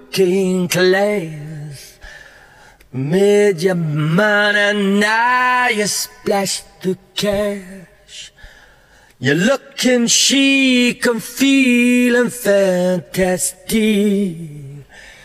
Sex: male